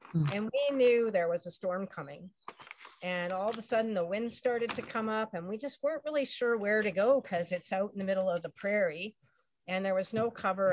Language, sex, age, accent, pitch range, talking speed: English, female, 50-69, American, 180-235 Hz, 235 wpm